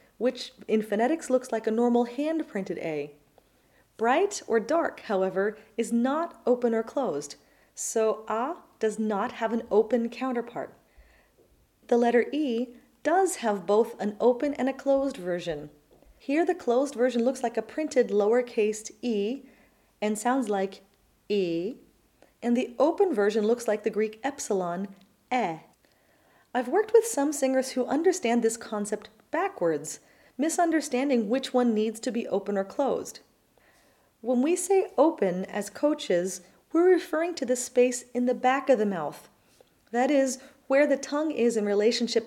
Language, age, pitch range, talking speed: English, 30-49, 210-265 Hz, 150 wpm